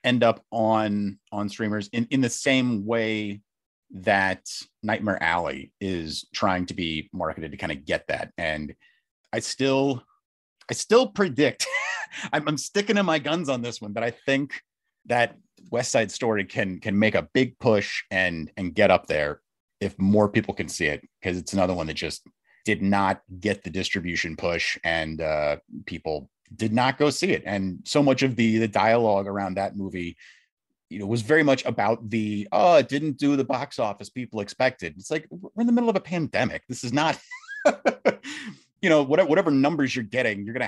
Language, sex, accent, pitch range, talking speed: English, male, American, 95-130 Hz, 190 wpm